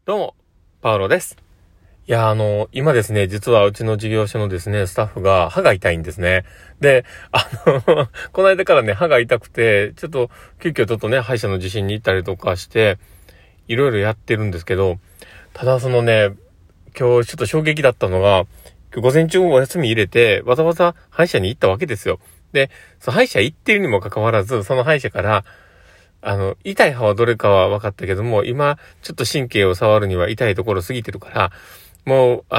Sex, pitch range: male, 95-130 Hz